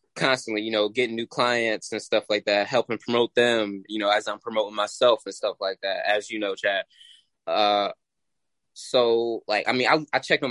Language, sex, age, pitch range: English, male, 20-39, 105-125 Hz